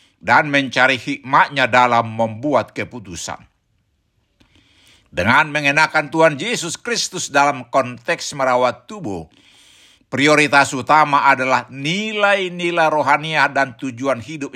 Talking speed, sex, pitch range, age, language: 95 wpm, male, 120-155 Hz, 60-79, Indonesian